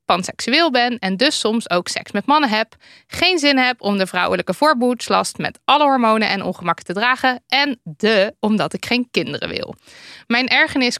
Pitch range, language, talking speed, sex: 190-255 Hz, Dutch, 180 wpm, female